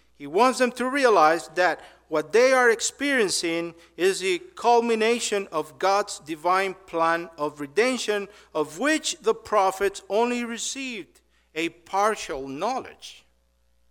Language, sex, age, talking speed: English, male, 50-69, 120 wpm